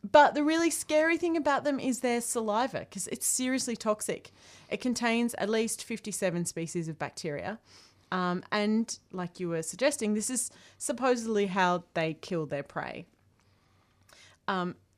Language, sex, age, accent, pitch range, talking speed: English, female, 30-49, Australian, 155-200 Hz, 150 wpm